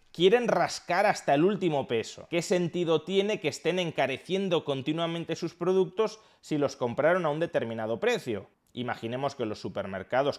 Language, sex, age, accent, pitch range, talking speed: Spanish, male, 20-39, Spanish, 125-170 Hz, 150 wpm